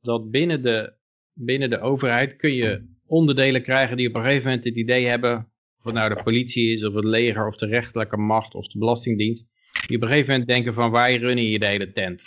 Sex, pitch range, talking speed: male, 115-140 Hz, 230 wpm